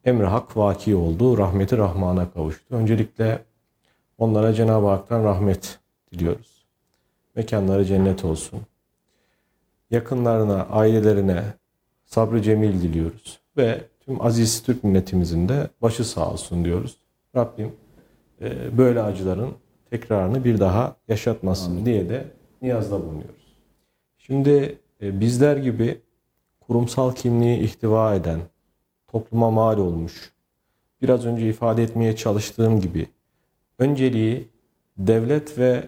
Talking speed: 105 wpm